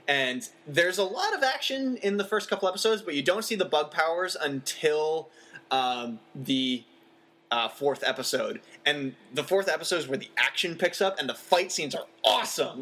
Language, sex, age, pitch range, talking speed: English, male, 20-39, 130-190 Hz, 185 wpm